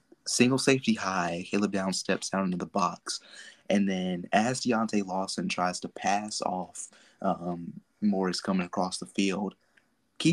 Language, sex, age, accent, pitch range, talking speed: English, male, 20-39, American, 90-110 Hz, 150 wpm